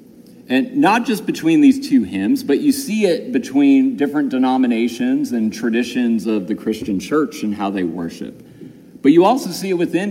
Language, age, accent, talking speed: English, 50-69, American, 180 wpm